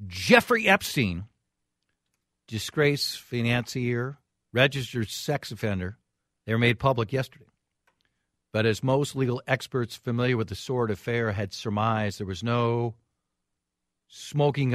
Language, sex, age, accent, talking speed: English, male, 50-69, American, 115 wpm